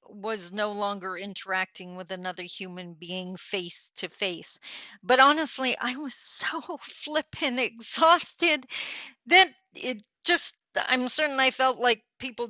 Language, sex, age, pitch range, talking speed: English, female, 40-59, 185-245 Hz, 120 wpm